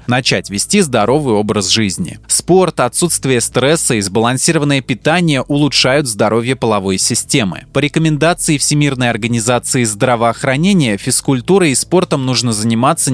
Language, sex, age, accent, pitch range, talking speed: Russian, male, 20-39, native, 110-145 Hz, 115 wpm